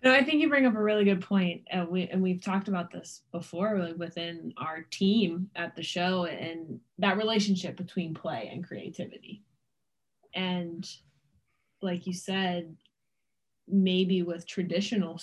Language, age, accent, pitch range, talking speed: English, 10-29, American, 165-190 Hz, 155 wpm